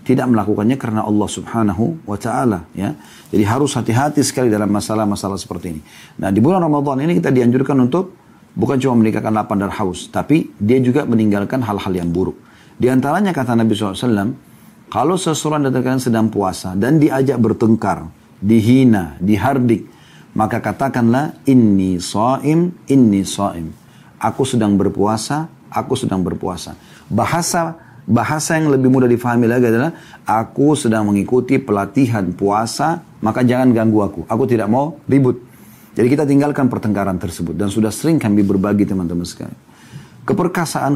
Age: 40-59